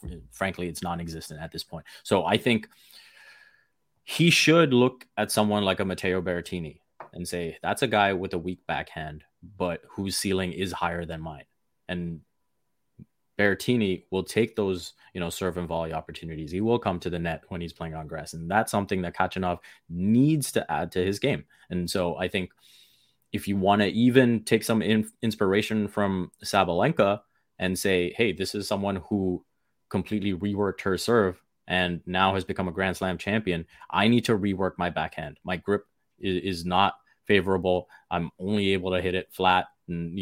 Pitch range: 90-105 Hz